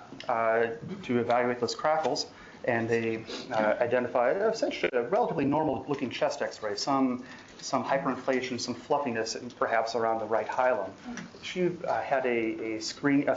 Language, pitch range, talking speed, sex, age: English, 110-130 Hz, 150 wpm, male, 30-49